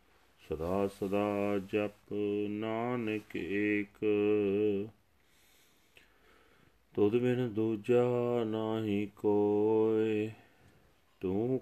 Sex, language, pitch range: male, Punjabi, 105-120 Hz